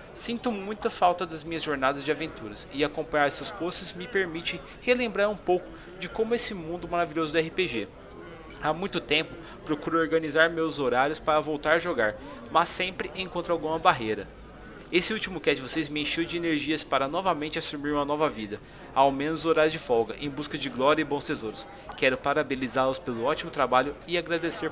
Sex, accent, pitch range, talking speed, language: male, Brazilian, 145-175 Hz, 180 wpm, Portuguese